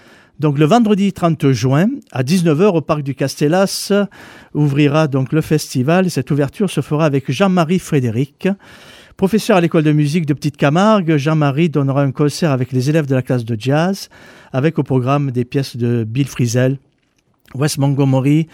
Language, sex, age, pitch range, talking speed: French, male, 50-69, 135-165 Hz, 170 wpm